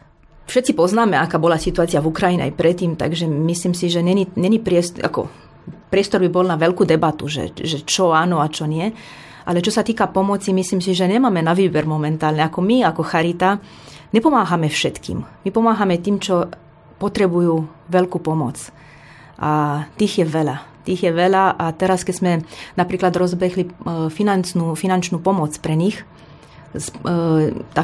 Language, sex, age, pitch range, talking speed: Slovak, female, 30-49, 160-190 Hz, 160 wpm